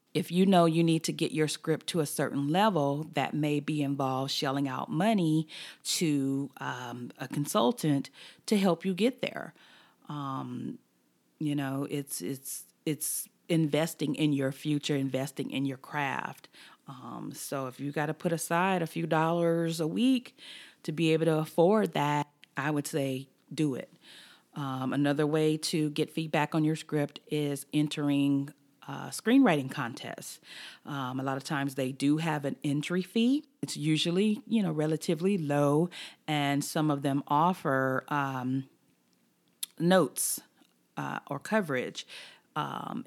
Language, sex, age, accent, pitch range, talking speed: English, female, 40-59, American, 135-160 Hz, 150 wpm